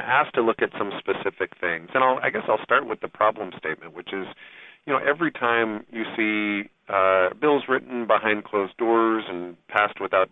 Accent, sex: American, male